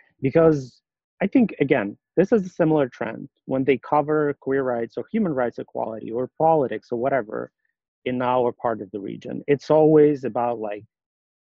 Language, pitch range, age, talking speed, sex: English, 125-160 Hz, 30-49, 170 wpm, male